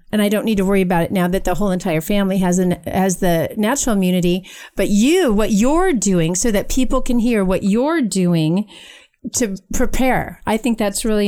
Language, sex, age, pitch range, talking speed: English, female, 40-59, 185-225 Hz, 205 wpm